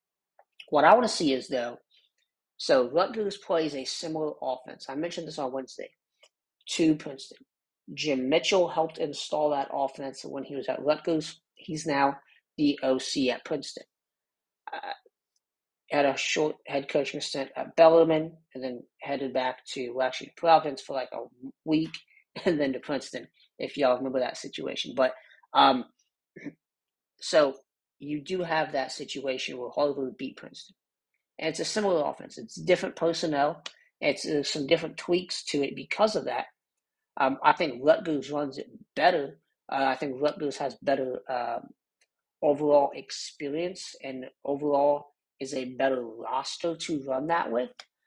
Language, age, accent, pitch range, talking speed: English, 40-59, American, 135-160 Hz, 150 wpm